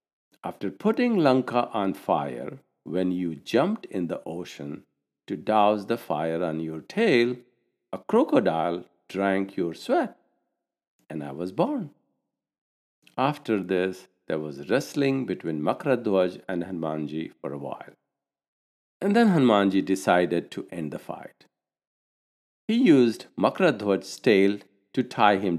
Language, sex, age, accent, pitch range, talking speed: English, male, 60-79, Indian, 85-110 Hz, 125 wpm